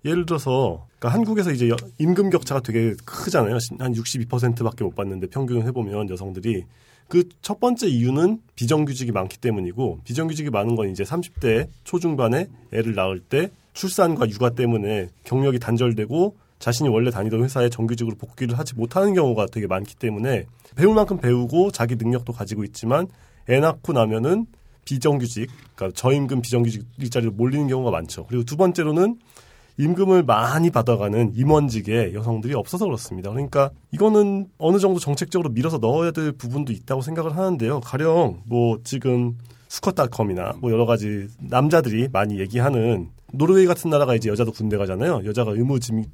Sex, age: male, 40-59